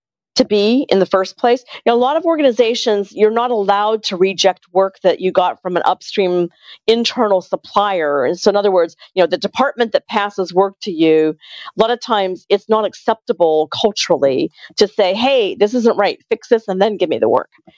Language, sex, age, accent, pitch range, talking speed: English, female, 40-59, American, 190-260 Hz, 210 wpm